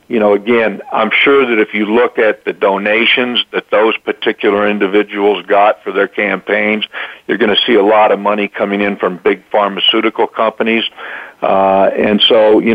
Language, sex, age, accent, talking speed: English, male, 50-69, American, 180 wpm